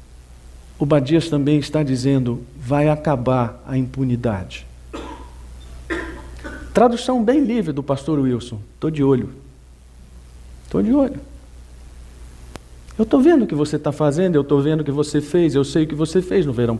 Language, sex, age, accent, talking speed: Portuguese, male, 50-69, Brazilian, 155 wpm